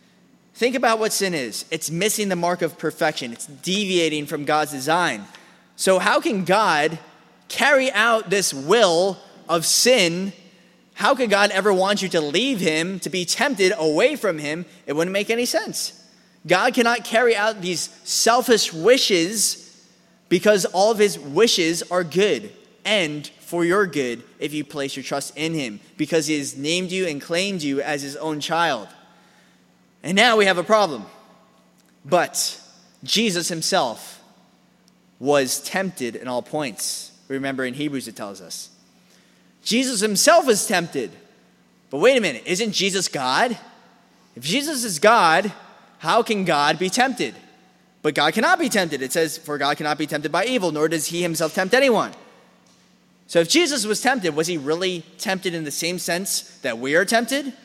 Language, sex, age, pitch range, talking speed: English, male, 20-39, 155-215 Hz, 165 wpm